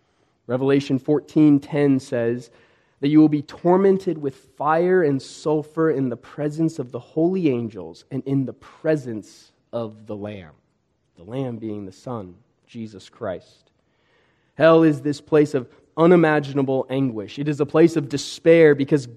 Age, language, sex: 20-39, English, male